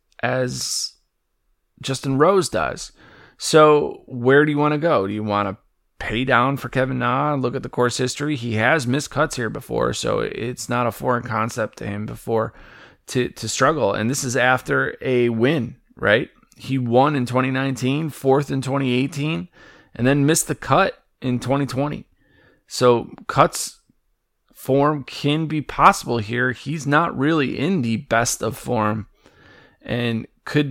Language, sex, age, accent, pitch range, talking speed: English, male, 30-49, American, 115-145 Hz, 160 wpm